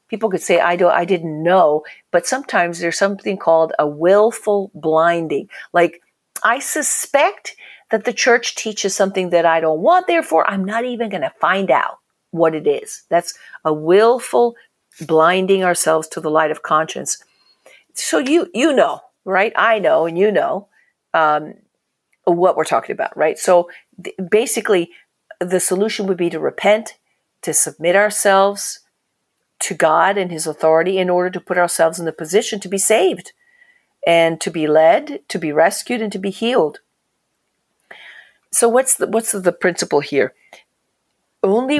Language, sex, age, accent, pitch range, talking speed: English, female, 50-69, American, 170-225 Hz, 160 wpm